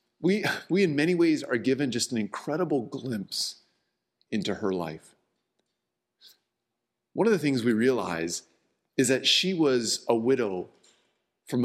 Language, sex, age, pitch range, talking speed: English, male, 40-59, 115-150 Hz, 140 wpm